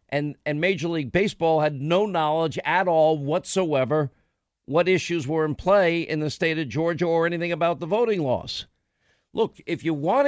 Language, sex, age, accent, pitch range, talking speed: English, male, 50-69, American, 135-185 Hz, 180 wpm